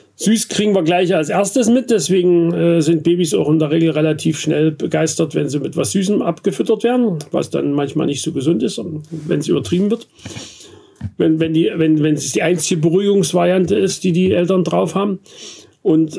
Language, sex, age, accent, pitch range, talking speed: German, male, 50-69, German, 150-180 Hz, 190 wpm